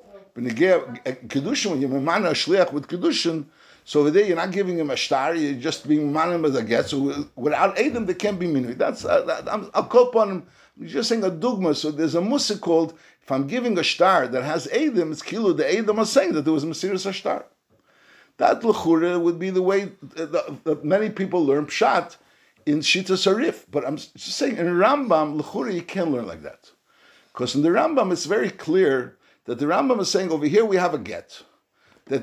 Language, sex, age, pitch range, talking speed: English, male, 60-79, 155-200 Hz, 200 wpm